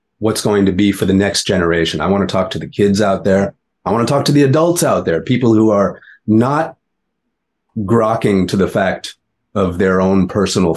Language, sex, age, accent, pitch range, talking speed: English, male, 30-49, American, 95-110 Hz, 210 wpm